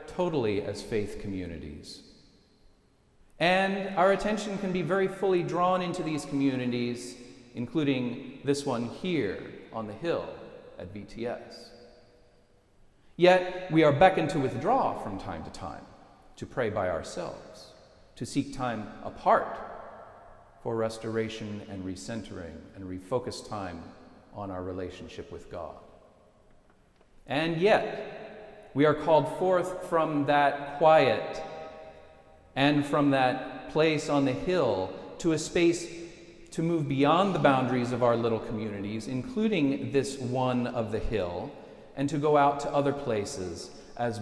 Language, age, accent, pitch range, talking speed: English, 40-59, American, 110-170 Hz, 130 wpm